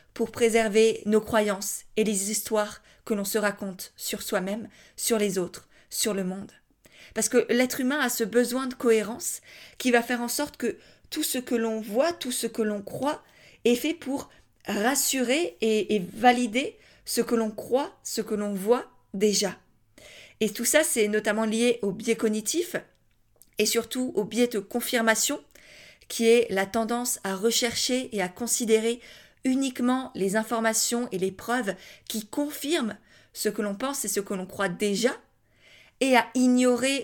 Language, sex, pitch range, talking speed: French, female, 210-250 Hz, 170 wpm